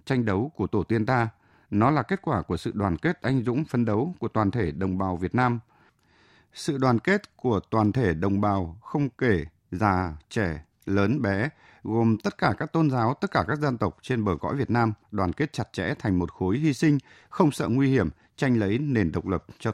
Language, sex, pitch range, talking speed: Vietnamese, male, 100-140 Hz, 225 wpm